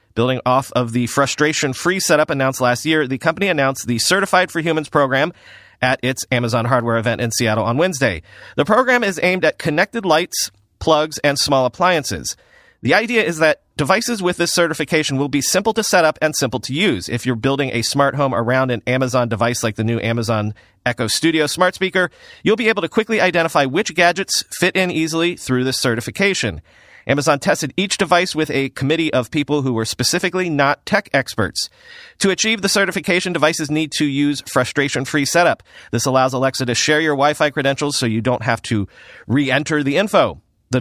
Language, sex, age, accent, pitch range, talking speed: English, male, 30-49, American, 125-170 Hz, 190 wpm